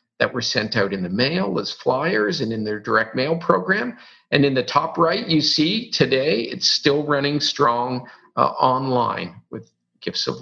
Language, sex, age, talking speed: English, male, 50-69, 185 wpm